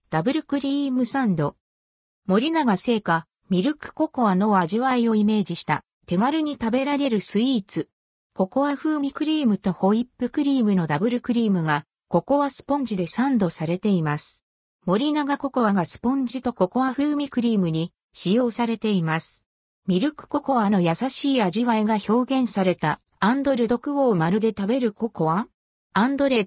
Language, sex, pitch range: Japanese, female, 185-265 Hz